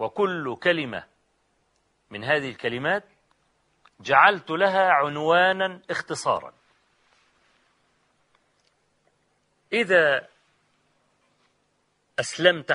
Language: Arabic